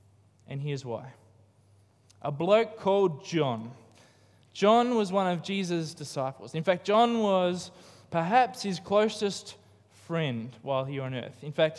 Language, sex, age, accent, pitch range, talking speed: English, male, 20-39, Australian, 125-195 Hz, 145 wpm